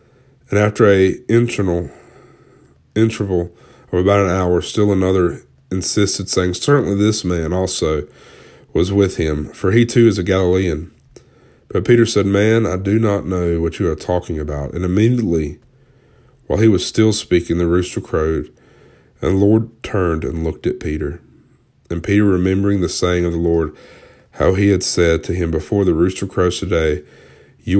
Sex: male